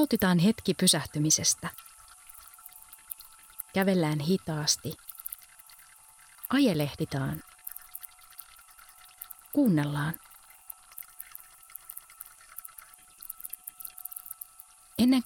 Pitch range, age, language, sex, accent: 145-235 Hz, 30-49, Finnish, female, native